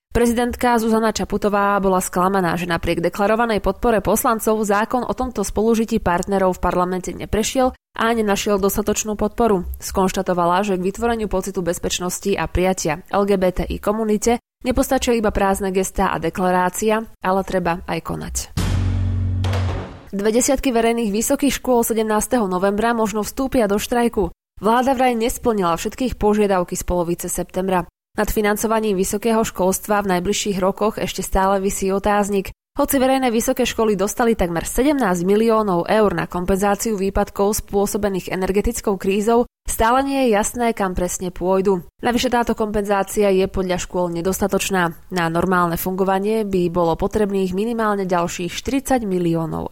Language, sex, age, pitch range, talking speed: Slovak, female, 20-39, 180-225 Hz, 135 wpm